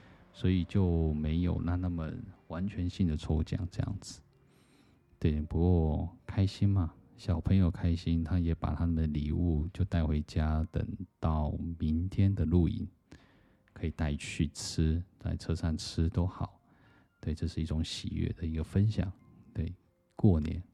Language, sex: Chinese, male